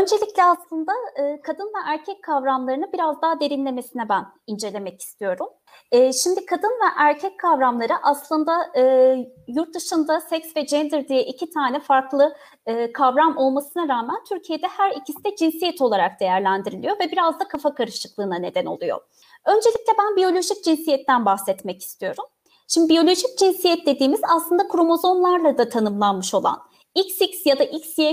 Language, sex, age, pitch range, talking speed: Turkish, female, 30-49, 260-355 Hz, 135 wpm